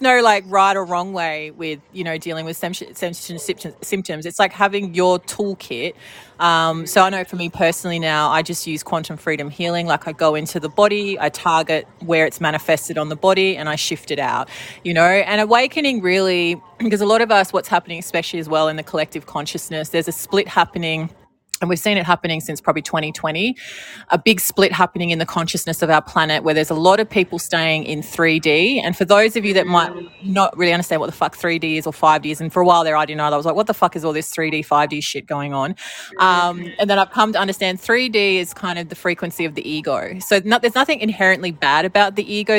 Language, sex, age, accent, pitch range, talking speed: English, female, 30-49, Australian, 160-190 Hz, 235 wpm